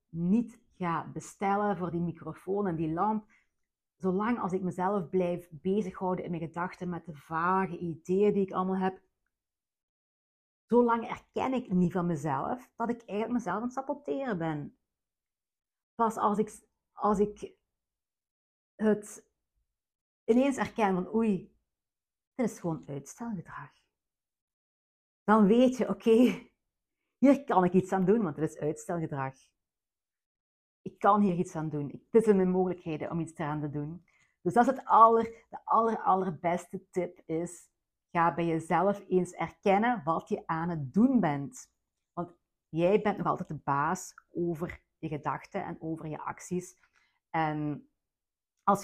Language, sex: Dutch, female